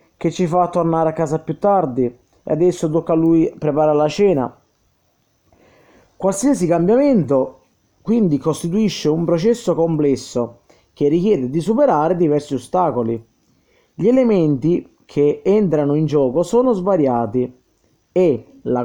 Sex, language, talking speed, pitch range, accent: male, Italian, 125 wpm, 145-200 Hz, native